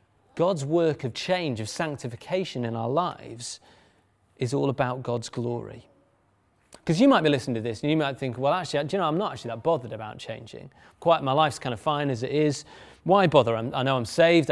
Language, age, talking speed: English, 30-49, 220 wpm